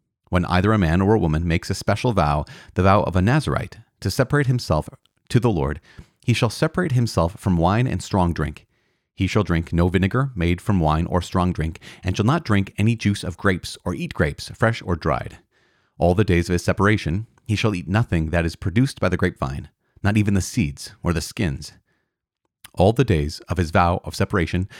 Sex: male